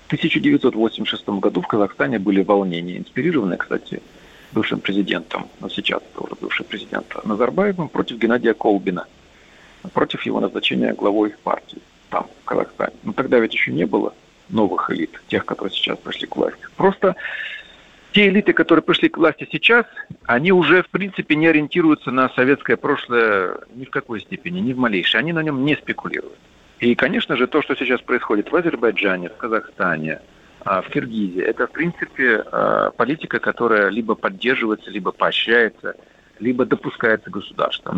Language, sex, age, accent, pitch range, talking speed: Russian, male, 40-59, native, 105-175 Hz, 150 wpm